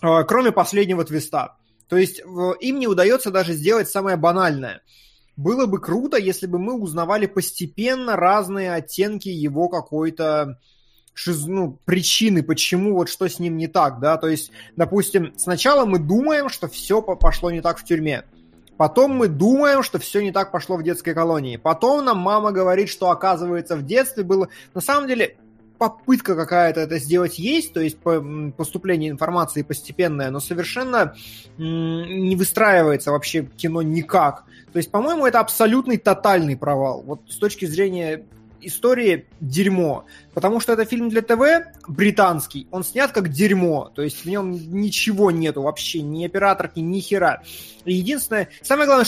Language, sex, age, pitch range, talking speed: Russian, male, 20-39, 160-210 Hz, 150 wpm